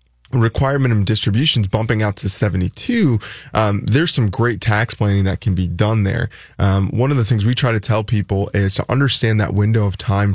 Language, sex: English, male